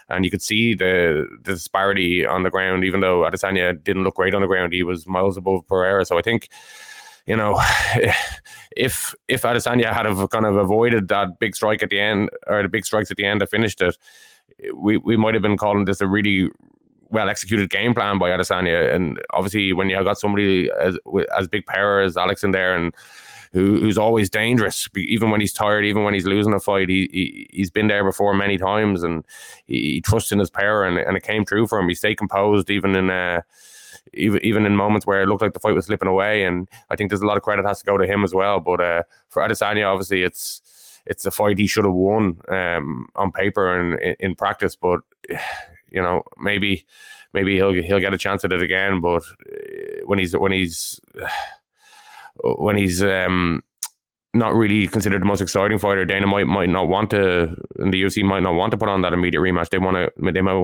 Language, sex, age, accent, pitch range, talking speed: English, male, 20-39, Irish, 95-110 Hz, 220 wpm